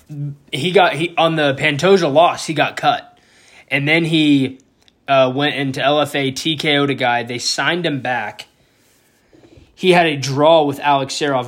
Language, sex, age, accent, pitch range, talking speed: English, male, 20-39, American, 125-150 Hz, 160 wpm